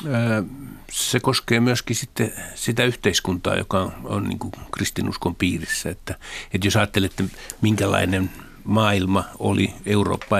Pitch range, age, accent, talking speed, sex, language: 95-105 Hz, 60-79, native, 115 wpm, male, Finnish